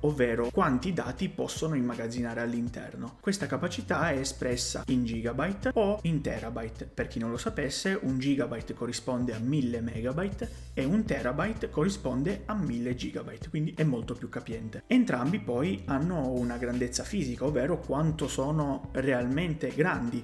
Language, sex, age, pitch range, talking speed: Italian, male, 30-49, 120-155 Hz, 145 wpm